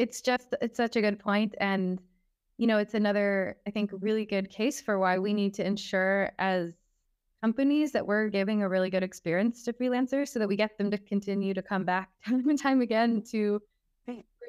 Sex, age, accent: female, 20-39, American